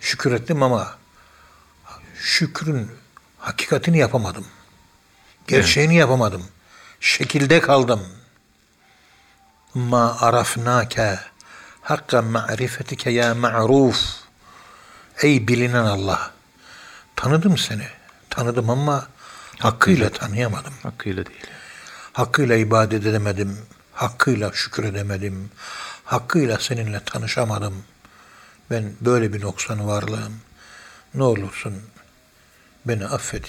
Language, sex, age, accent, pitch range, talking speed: Turkish, male, 60-79, native, 100-125 Hz, 80 wpm